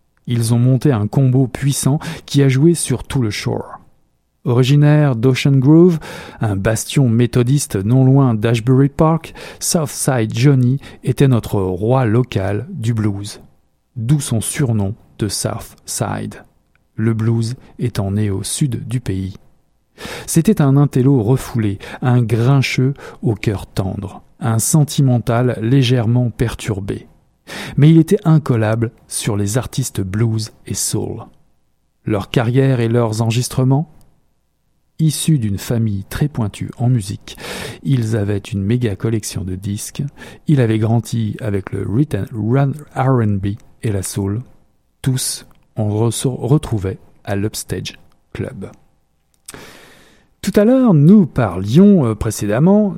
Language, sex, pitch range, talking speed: French, male, 110-140 Hz, 125 wpm